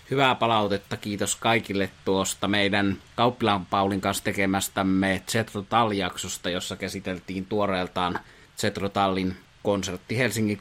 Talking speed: 95 wpm